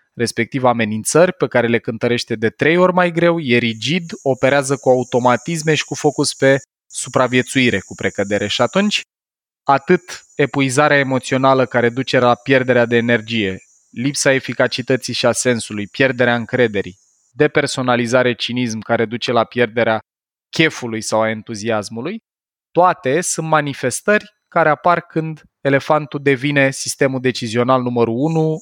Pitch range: 120-155 Hz